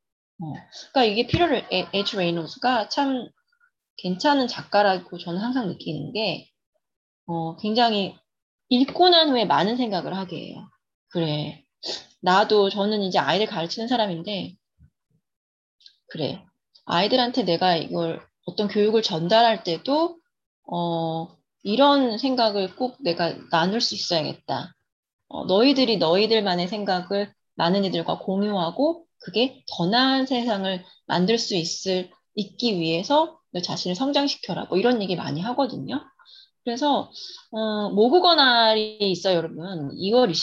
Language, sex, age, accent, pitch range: Korean, female, 20-39, native, 180-255 Hz